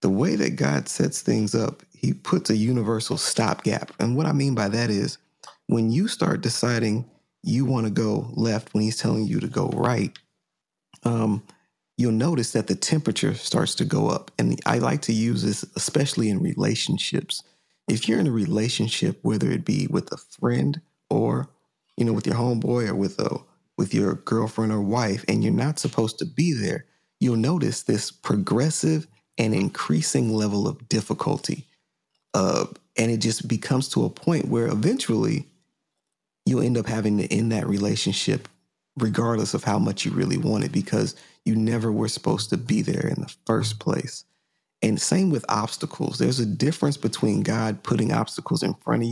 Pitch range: 110-130 Hz